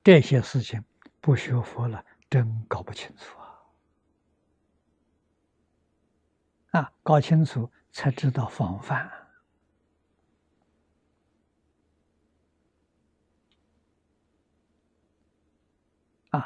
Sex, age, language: male, 60-79, Chinese